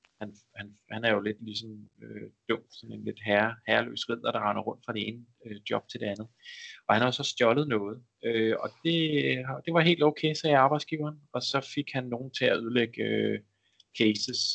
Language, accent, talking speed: Danish, native, 210 wpm